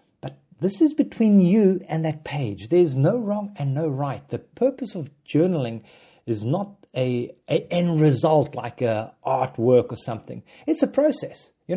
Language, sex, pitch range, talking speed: English, male, 125-170 Hz, 165 wpm